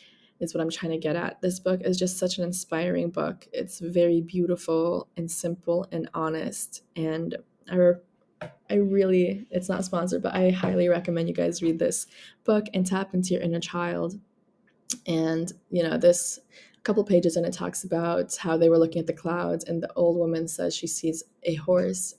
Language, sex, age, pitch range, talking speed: English, female, 20-39, 170-195 Hz, 190 wpm